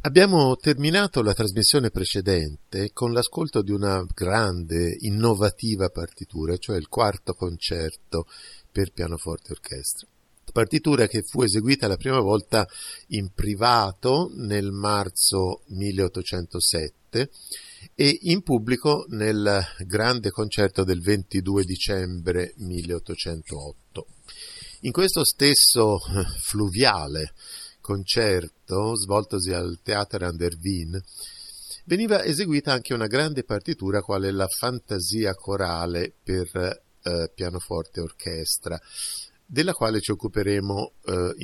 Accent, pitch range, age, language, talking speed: native, 90-110 Hz, 50-69, Italian, 105 wpm